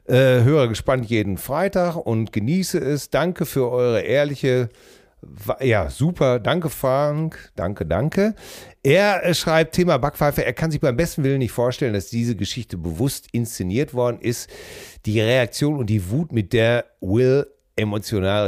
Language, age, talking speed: German, 40-59, 155 wpm